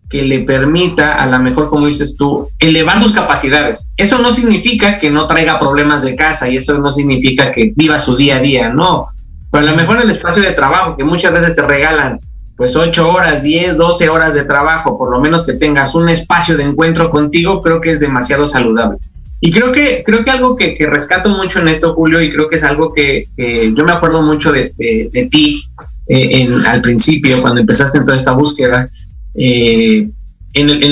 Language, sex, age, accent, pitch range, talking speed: Spanish, male, 30-49, Mexican, 130-170 Hz, 215 wpm